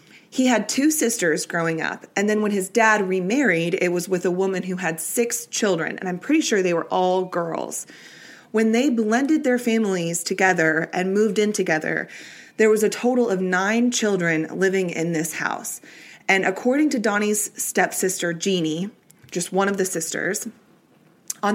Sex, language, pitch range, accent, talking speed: female, English, 180-225 Hz, American, 175 wpm